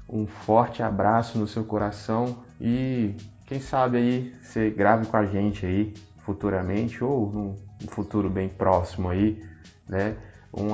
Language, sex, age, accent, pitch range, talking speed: Portuguese, male, 20-39, Brazilian, 100-115 Hz, 140 wpm